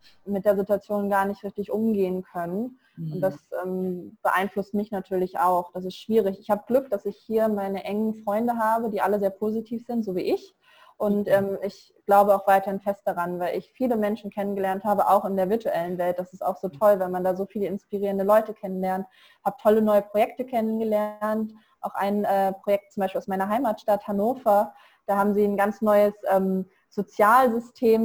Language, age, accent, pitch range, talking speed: German, 20-39, German, 195-220 Hz, 195 wpm